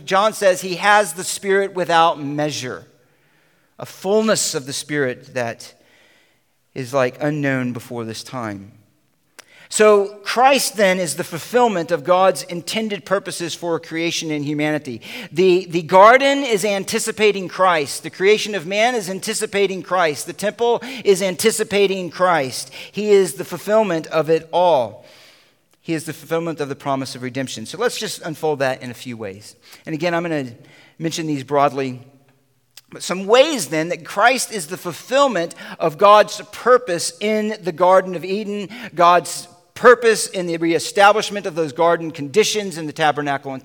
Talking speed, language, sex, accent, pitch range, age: 160 wpm, English, male, American, 145-200 Hz, 40-59